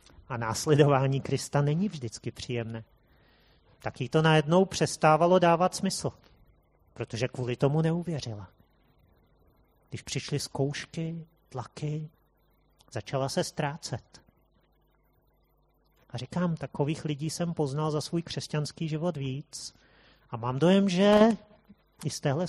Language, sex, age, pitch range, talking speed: Czech, male, 30-49, 125-160 Hz, 110 wpm